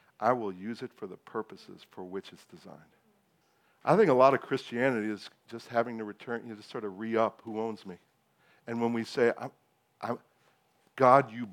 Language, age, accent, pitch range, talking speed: English, 50-69, American, 110-130 Hz, 185 wpm